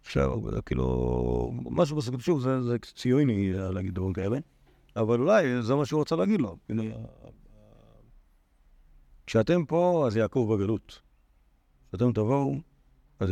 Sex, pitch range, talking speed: male, 90-115 Hz, 120 wpm